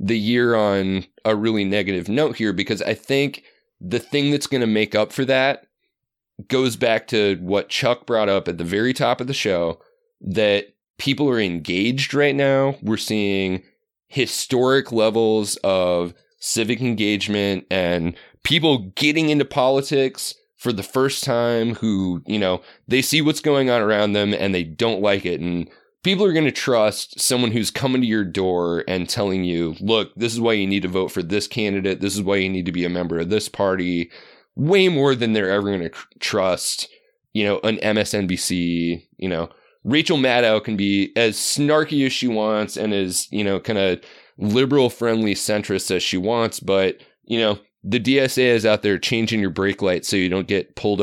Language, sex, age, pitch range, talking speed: English, male, 20-39, 95-125 Hz, 190 wpm